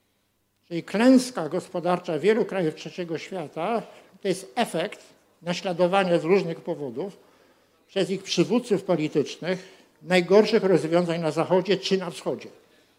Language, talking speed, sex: Polish, 115 wpm, male